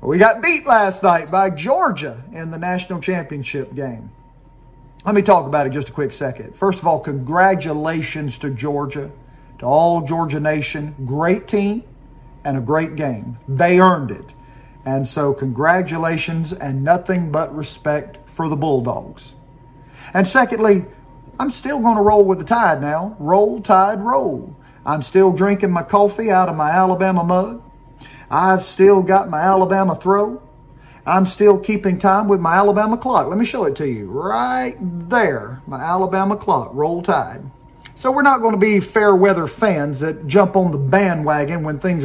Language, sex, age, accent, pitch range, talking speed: English, male, 50-69, American, 145-200 Hz, 165 wpm